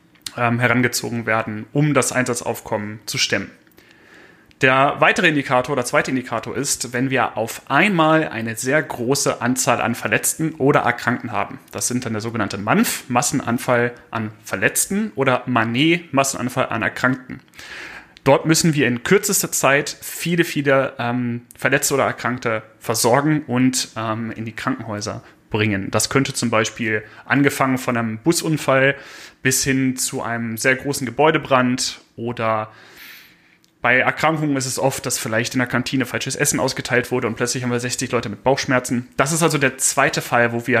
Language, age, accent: German, 30-49, German